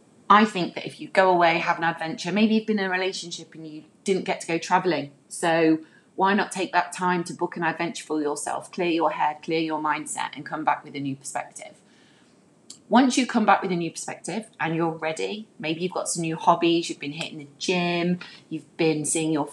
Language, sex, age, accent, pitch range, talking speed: English, female, 30-49, British, 150-190 Hz, 225 wpm